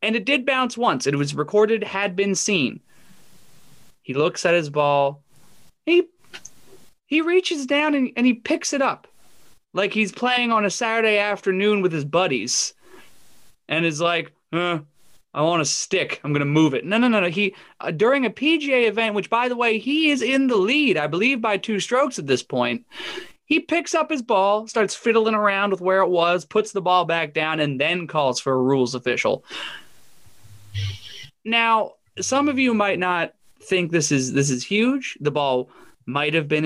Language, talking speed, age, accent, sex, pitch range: English, 190 wpm, 20-39, American, male, 150-225 Hz